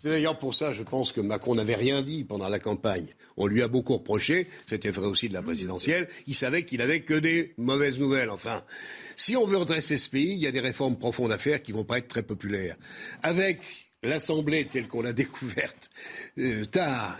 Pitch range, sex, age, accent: 110-155 Hz, male, 60-79, French